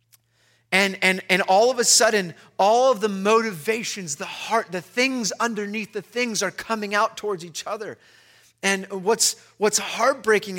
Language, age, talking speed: English, 30-49, 160 wpm